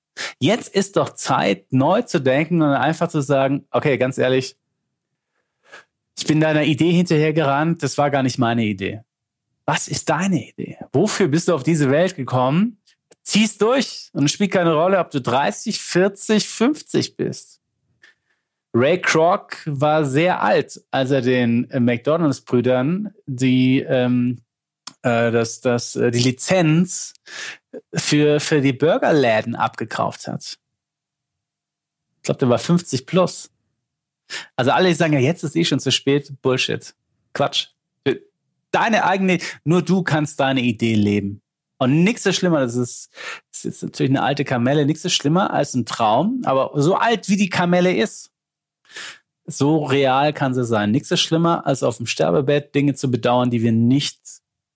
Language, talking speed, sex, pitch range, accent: German, 150 wpm, male, 130-175 Hz, German